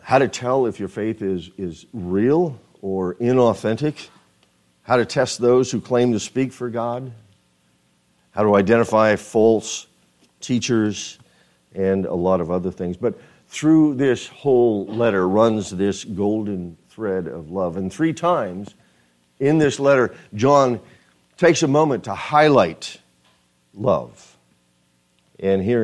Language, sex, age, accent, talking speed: English, male, 50-69, American, 135 wpm